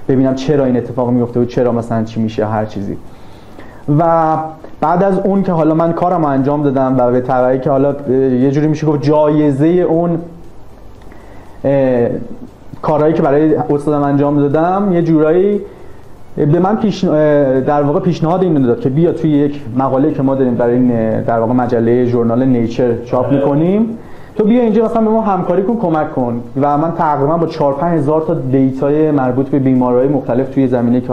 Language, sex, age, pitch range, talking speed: Persian, male, 30-49, 125-165 Hz, 175 wpm